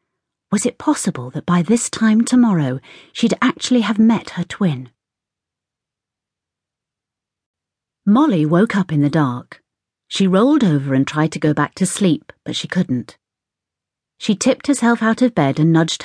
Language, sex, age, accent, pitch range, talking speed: English, female, 40-59, British, 145-225 Hz, 155 wpm